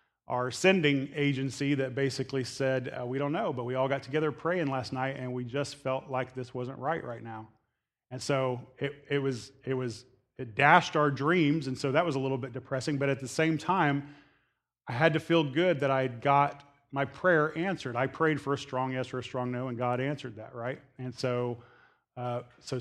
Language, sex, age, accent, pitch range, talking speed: English, male, 30-49, American, 130-145 Hz, 220 wpm